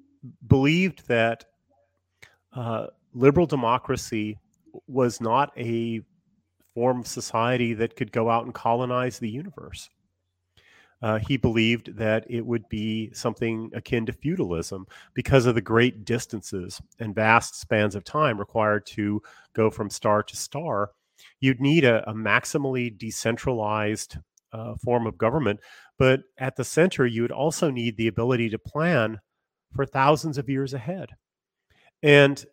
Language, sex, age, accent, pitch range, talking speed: English, male, 40-59, American, 110-135 Hz, 140 wpm